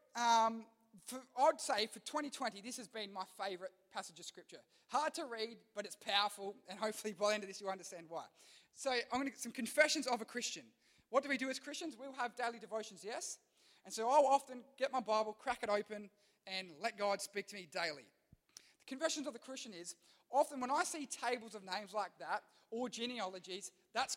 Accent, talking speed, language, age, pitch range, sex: Australian, 215 wpm, English, 20-39, 200-255 Hz, male